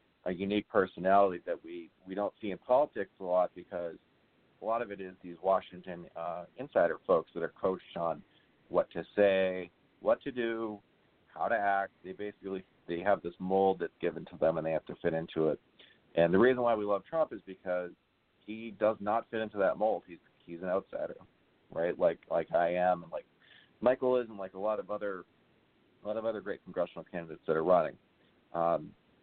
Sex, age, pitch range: male, 40-59, 85-100 Hz